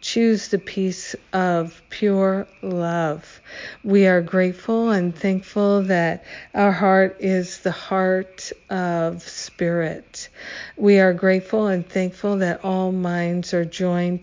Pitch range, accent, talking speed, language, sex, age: 175-195 Hz, American, 120 wpm, English, female, 50-69